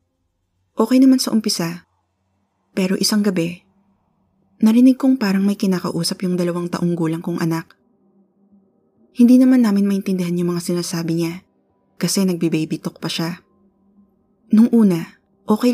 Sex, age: female, 20-39